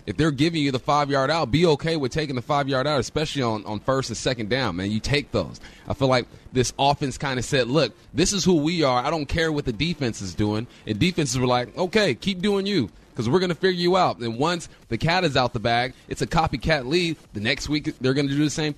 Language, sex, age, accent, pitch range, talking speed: English, male, 30-49, American, 120-155 Hz, 265 wpm